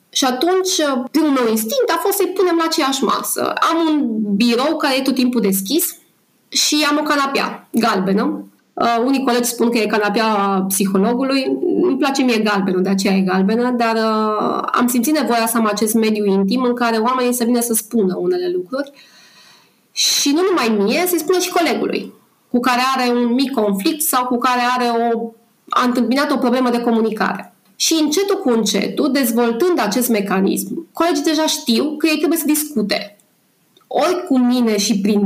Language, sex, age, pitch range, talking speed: Romanian, female, 20-39, 215-285 Hz, 175 wpm